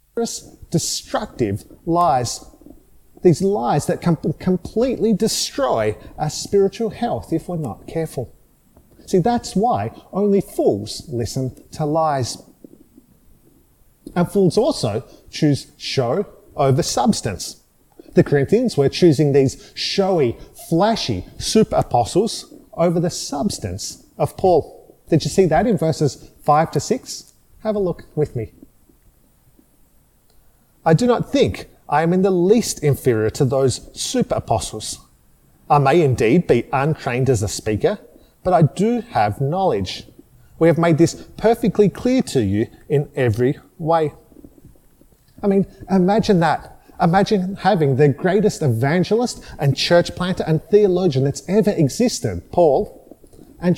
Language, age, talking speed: English, 30-49, 125 wpm